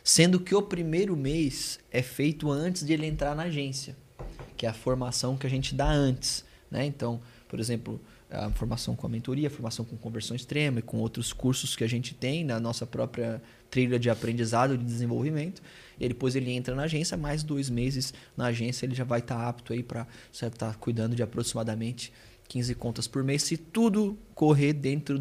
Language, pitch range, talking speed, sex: Portuguese, 125-150 Hz, 200 wpm, male